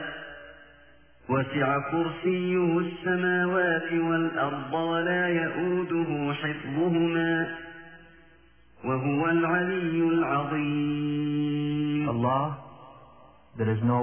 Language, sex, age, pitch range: Filipino, male, 40-59, 110-145 Hz